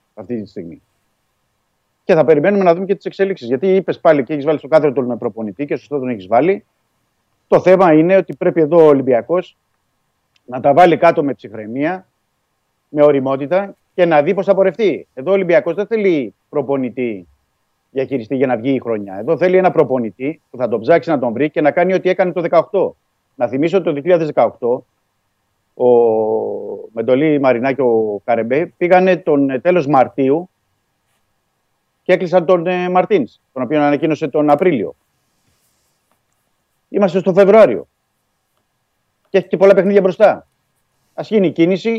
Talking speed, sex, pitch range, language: 165 wpm, male, 130-190 Hz, Greek